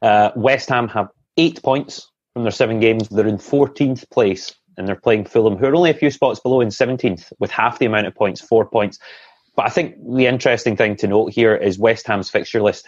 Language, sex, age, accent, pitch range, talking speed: English, male, 30-49, British, 85-115 Hz, 230 wpm